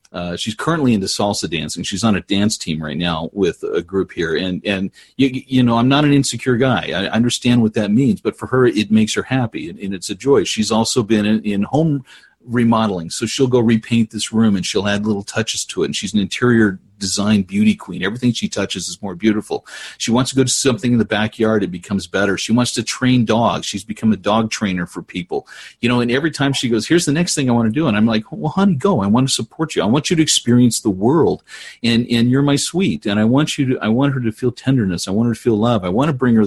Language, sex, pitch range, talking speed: English, male, 110-140 Hz, 265 wpm